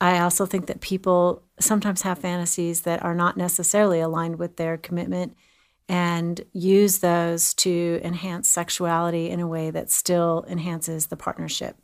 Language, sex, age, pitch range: English, female, 40-59, 170-195 Hz